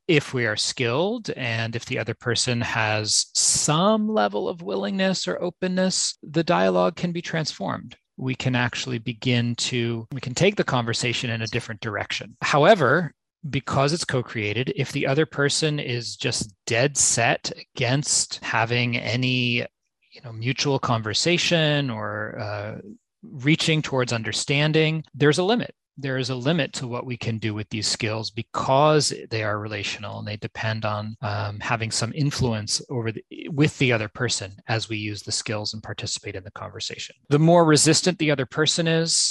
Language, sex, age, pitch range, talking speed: English, male, 30-49, 110-145 Hz, 165 wpm